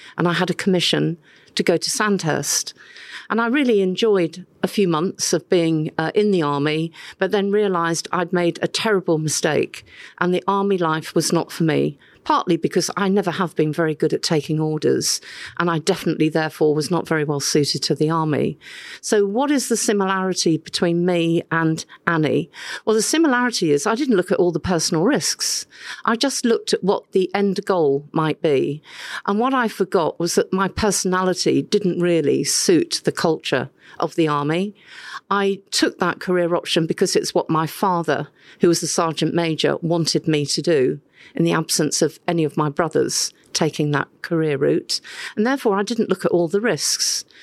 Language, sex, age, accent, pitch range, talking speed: English, female, 50-69, British, 160-200 Hz, 185 wpm